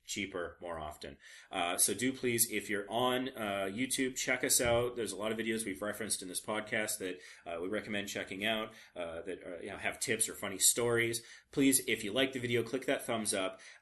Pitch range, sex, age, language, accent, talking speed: 100-125 Hz, male, 30-49, English, American, 215 wpm